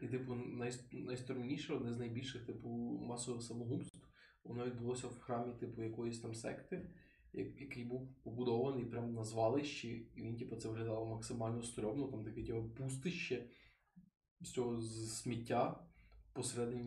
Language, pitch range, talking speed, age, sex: Ukrainian, 115-130 Hz, 140 wpm, 20-39, male